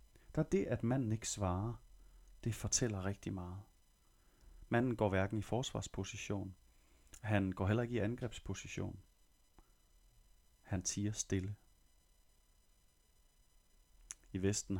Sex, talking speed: male, 105 wpm